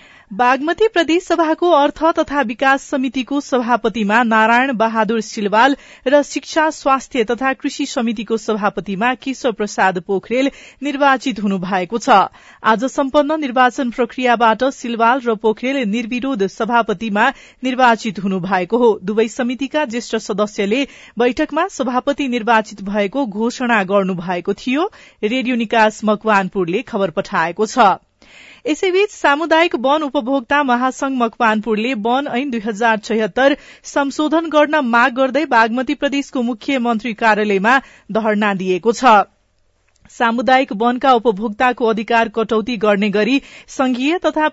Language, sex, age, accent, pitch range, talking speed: English, female, 40-59, Indian, 220-275 Hz, 110 wpm